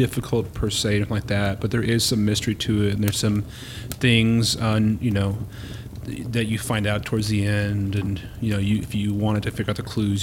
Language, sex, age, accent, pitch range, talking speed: English, male, 30-49, American, 105-115 Hz, 215 wpm